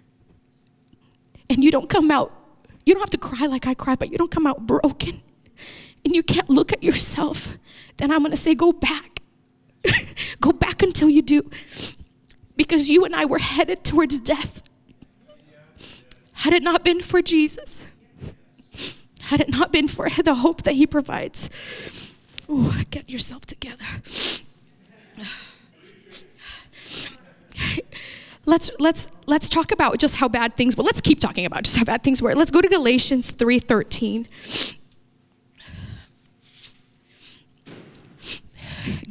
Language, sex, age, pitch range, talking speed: English, female, 20-39, 215-305 Hz, 135 wpm